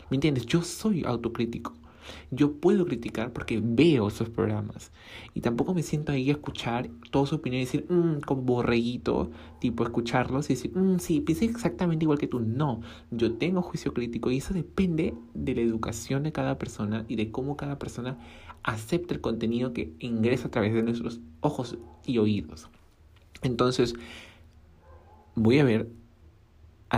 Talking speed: 165 wpm